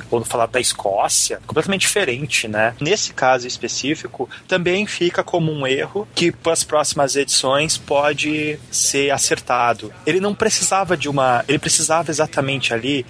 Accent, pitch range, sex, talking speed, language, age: Brazilian, 125-180 Hz, male, 145 wpm, Portuguese, 20-39